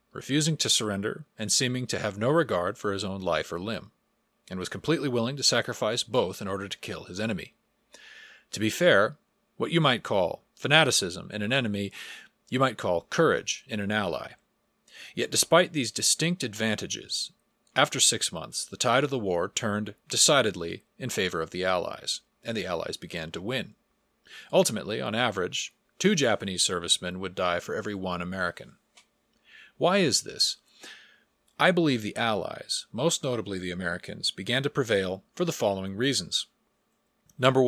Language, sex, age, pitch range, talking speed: English, male, 40-59, 95-135 Hz, 165 wpm